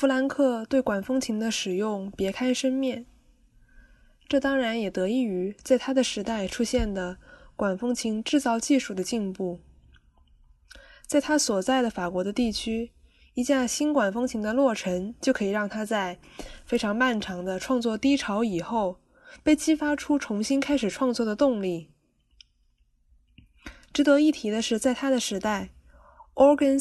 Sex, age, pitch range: female, 20-39, 195-260 Hz